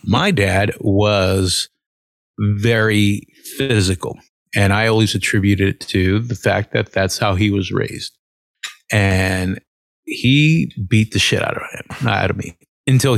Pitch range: 100-115 Hz